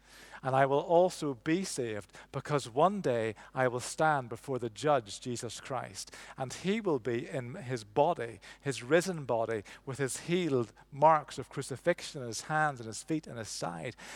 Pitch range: 115-145 Hz